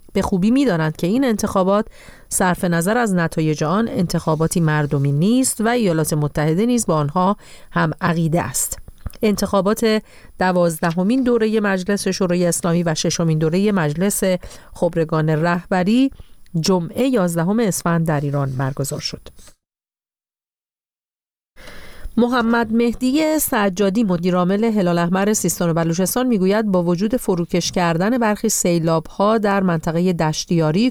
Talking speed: 120 wpm